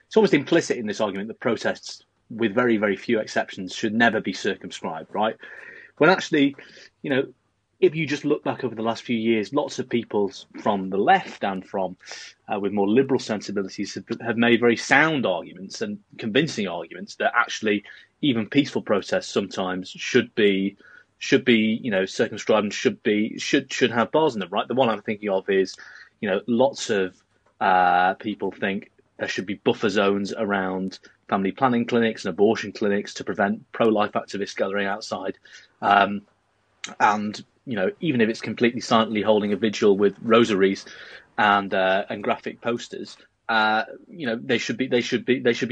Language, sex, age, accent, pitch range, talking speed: English, male, 30-49, British, 100-125 Hz, 180 wpm